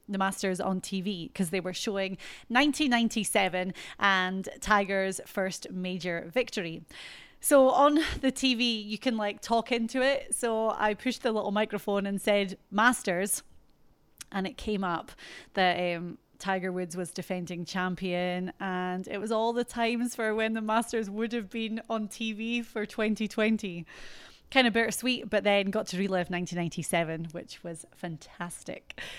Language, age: English, 30-49